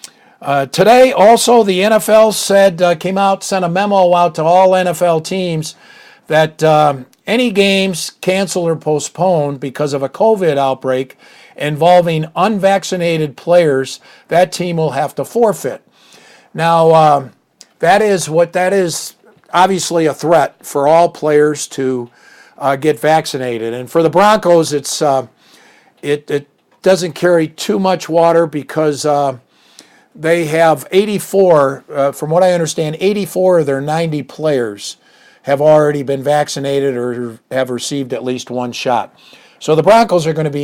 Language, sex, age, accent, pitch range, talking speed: English, male, 50-69, American, 145-185 Hz, 150 wpm